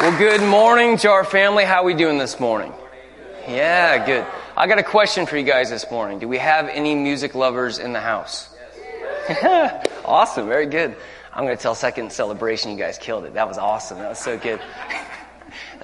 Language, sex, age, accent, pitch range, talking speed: English, male, 20-39, American, 120-170 Hz, 200 wpm